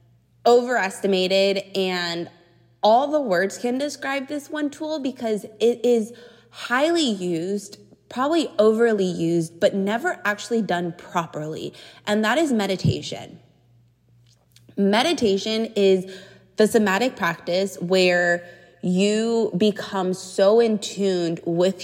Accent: American